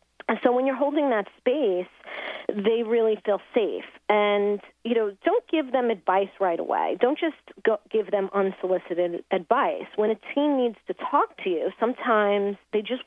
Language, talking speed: English, 170 wpm